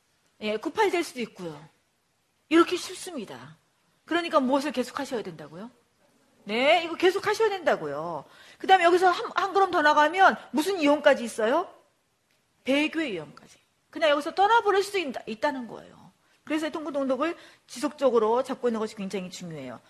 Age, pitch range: 40-59, 210-320 Hz